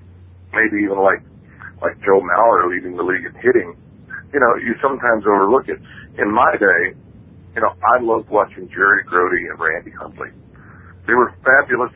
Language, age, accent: English, 50-69, American